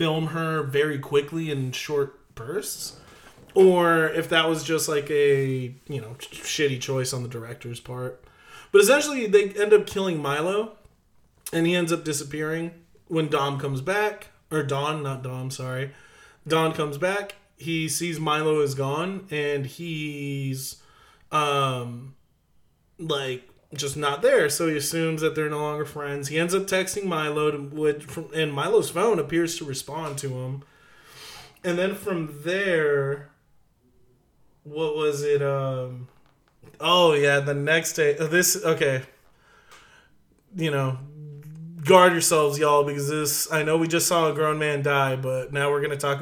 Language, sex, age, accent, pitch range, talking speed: English, male, 30-49, American, 140-165 Hz, 150 wpm